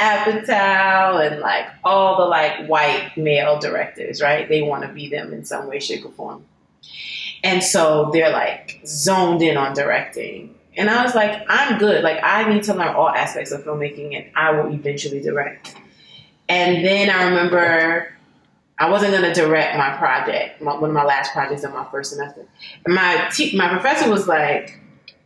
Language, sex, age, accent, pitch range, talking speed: English, female, 20-39, American, 155-210 Hz, 175 wpm